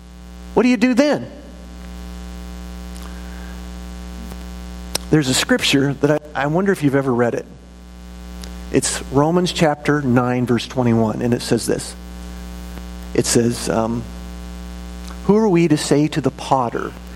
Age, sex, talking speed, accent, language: 40-59, male, 135 wpm, American, English